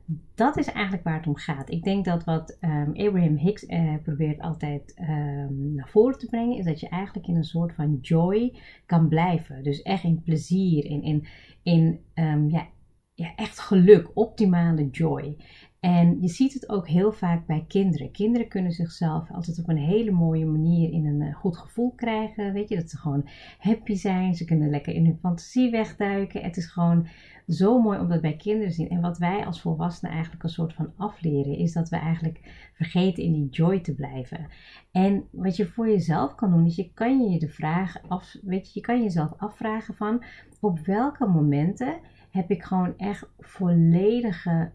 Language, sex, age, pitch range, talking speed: Dutch, female, 30-49, 160-195 Hz, 185 wpm